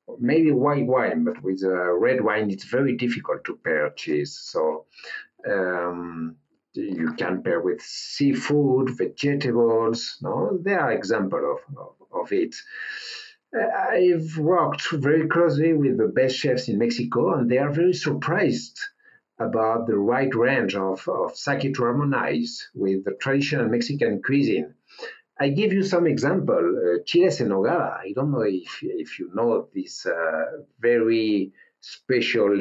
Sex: male